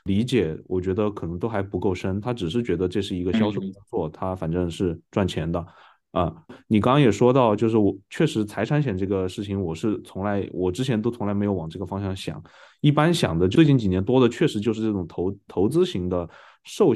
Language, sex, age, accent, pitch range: Chinese, male, 20-39, native, 95-120 Hz